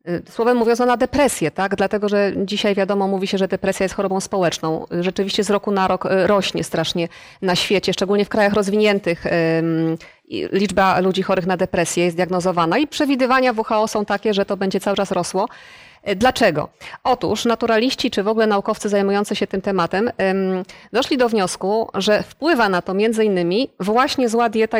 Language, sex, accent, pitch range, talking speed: Polish, female, native, 190-235 Hz, 170 wpm